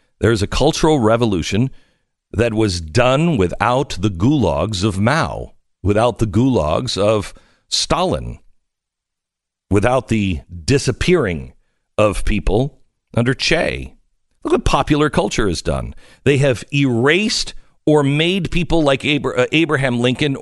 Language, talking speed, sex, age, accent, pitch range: English, 120 wpm, male, 50-69, American, 105-165 Hz